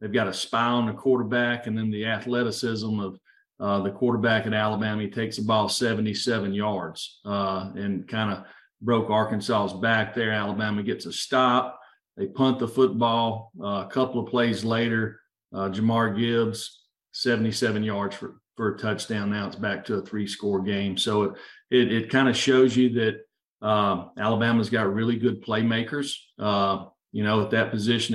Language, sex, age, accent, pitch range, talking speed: English, male, 40-59, American, 105-120 Hz, 170 wpm